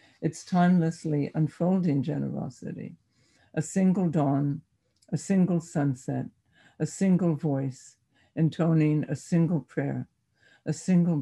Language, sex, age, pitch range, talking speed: English, female, 60-79, 130-155 Hz, 100 wpm